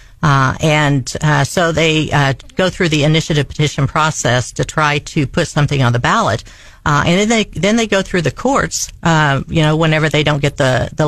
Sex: female